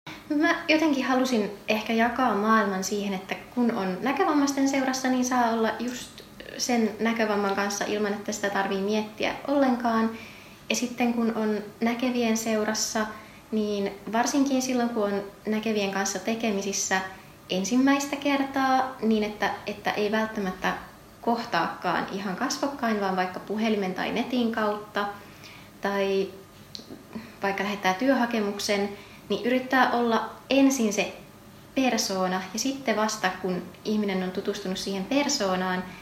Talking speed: 125 wpm